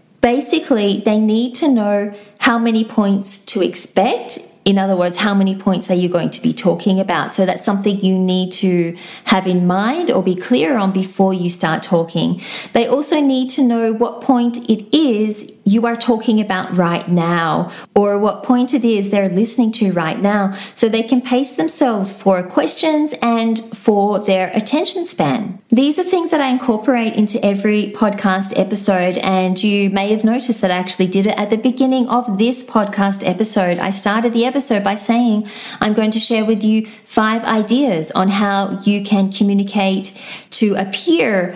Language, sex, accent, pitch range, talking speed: English, female, Australian, 190-235 Hz, 180 wpm